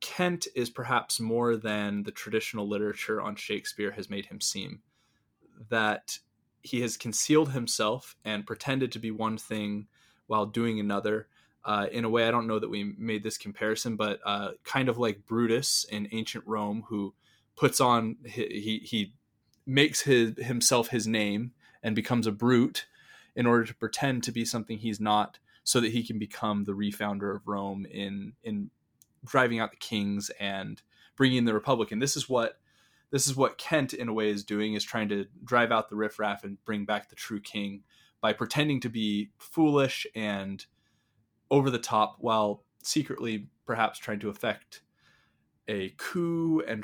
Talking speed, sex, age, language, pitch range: 175 wpm, male, 20-39, English, 105-120 Hz